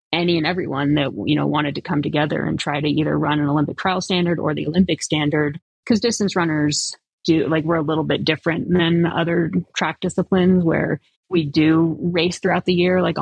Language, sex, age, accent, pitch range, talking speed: English, female, 30-49, American, 150-180 Hz, 205 wpm